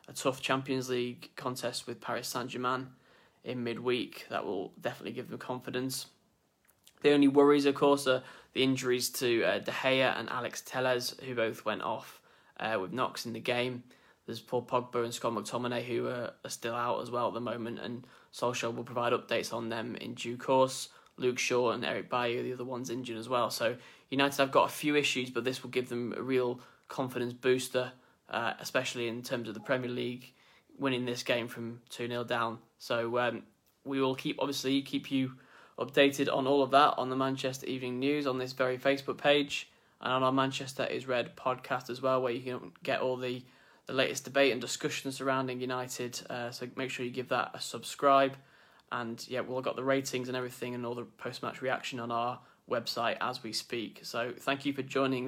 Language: English